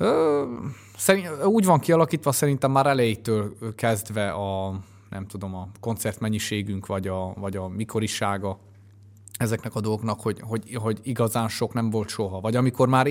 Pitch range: 100-115 Hz